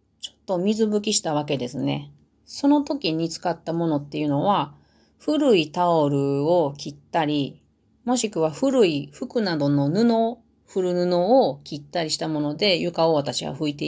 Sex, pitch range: female, 145-200 Hz